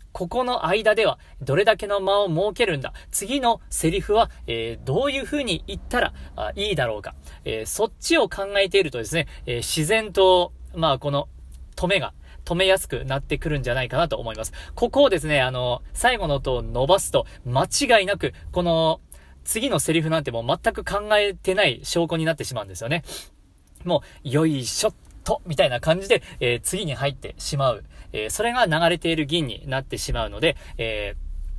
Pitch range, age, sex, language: 125-195 Hz, 40-59, male, Japanese